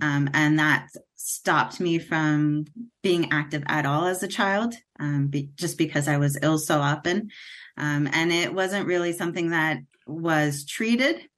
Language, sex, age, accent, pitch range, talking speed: English, female, 20-39, American, 150-175 Hz, 155 wpm